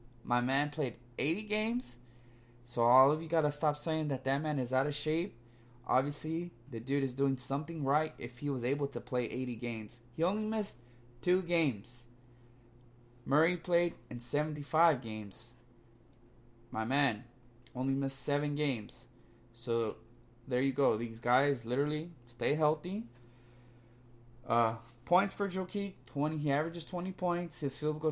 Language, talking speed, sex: English, 155 wpm, male